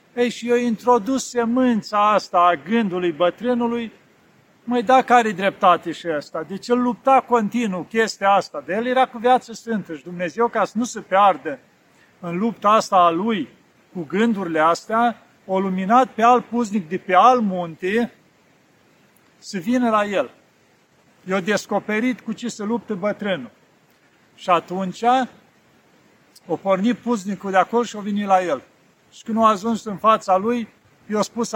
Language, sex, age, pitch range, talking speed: Romanian, male, 50-69, 185-235 Hz, 160 wpm